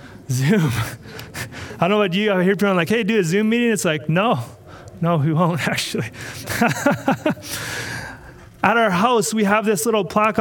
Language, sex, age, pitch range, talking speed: English, male, 30-49, 155-220 Hz, 175 wpm